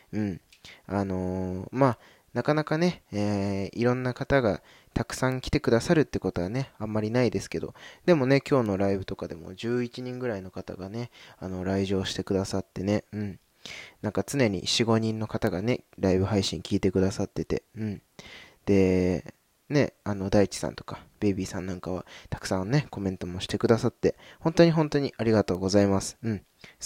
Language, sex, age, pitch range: Japanese, male, 20-39, 95-120 Hz